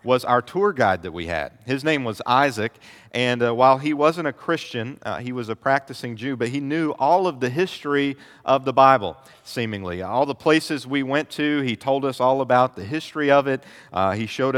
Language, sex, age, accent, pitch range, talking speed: English, male, 40-59, American, 120-145 Hz, 220 wpm